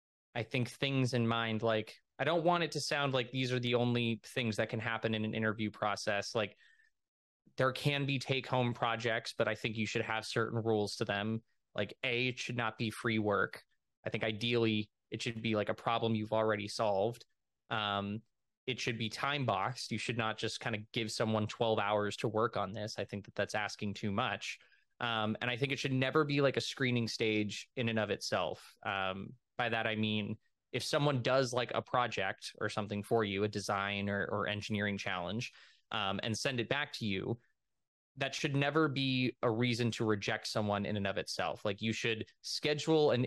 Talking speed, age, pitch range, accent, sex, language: 205 wpm, 20-39, 105-125 Hz, American, male, English